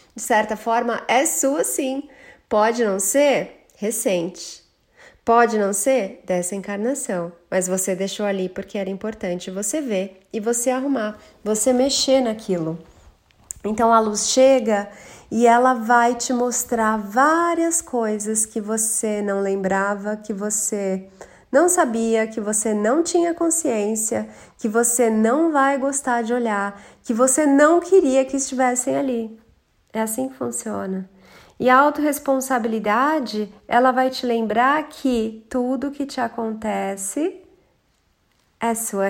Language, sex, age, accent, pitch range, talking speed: Portuguese, female, 30-49, Brazilian, 210-265 Hz, 130 wpm